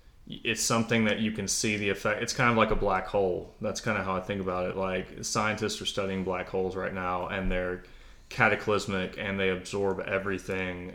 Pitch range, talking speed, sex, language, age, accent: 90-100 Hz, 210 wpm, male, English, 20-39, American